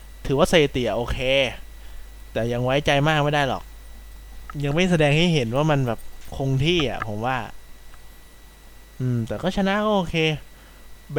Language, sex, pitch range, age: Thai, male, 115-165 Hz, 20-39